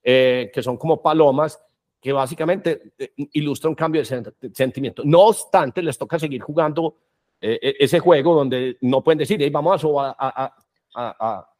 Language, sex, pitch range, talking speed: Spanish, male, 130-160 Hz, 170 wpm